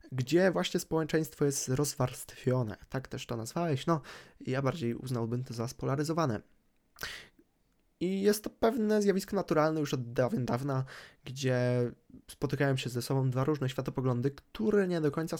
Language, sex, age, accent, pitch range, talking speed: Polish, male, 20-39, native, 130-160 Hz, 145 wpm